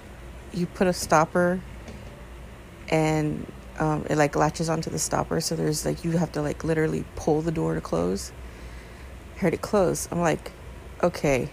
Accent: American